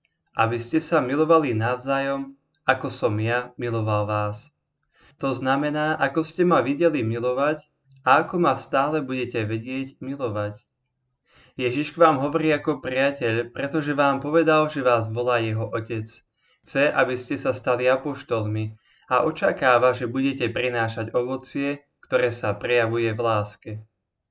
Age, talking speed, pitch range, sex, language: 20-39, 135 wpm, 115-140 Hz, male, Slovak